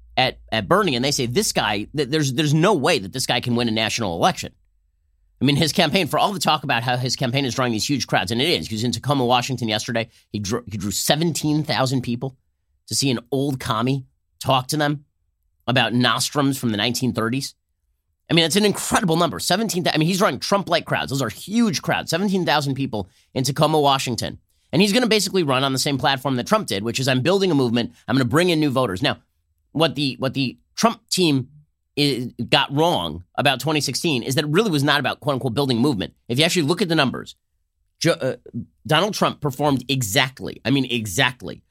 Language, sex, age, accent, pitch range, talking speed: English, male, 30-49, American, 115-155 Hz, 220 wpm